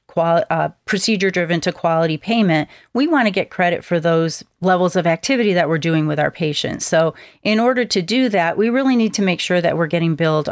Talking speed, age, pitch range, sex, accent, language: 215 wpm, 40-59, 160-195 Hz, female, American, English